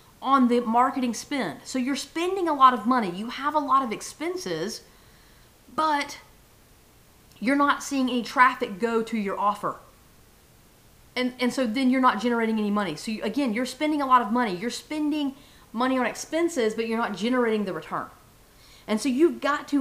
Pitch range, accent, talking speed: 220-280 Hz, American, 180 wpm